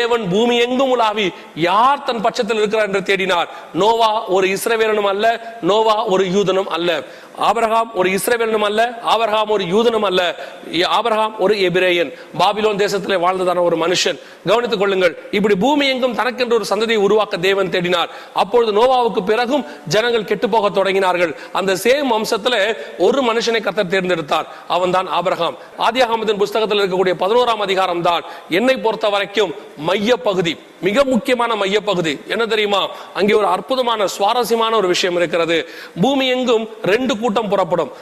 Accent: native